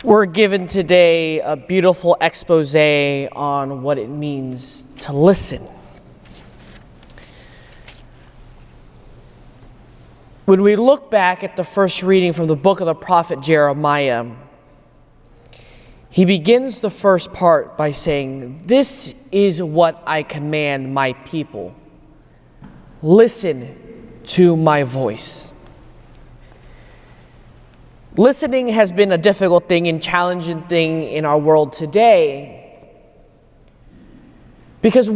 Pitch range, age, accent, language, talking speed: 155-225 Hz, 20-39, American, English, 100 wpm